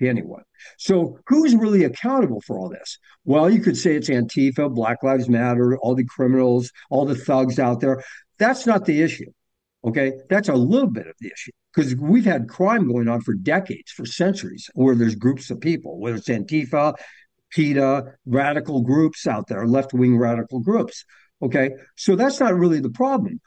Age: 60-79